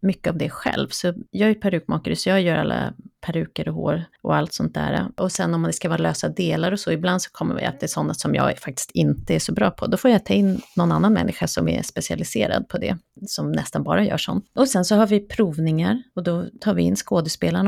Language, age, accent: Swedish, 30-49, native